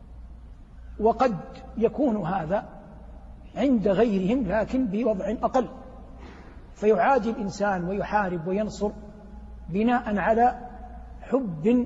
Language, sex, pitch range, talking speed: Arabic, male, 180-220 Hz, 75 wpm